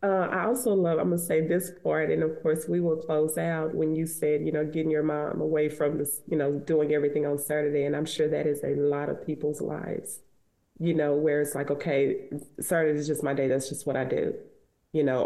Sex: female